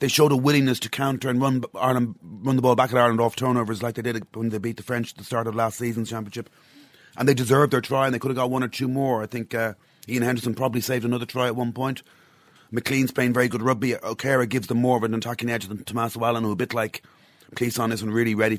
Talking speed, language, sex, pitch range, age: 265 wpm, English, male, 105-125 Hz, 30-49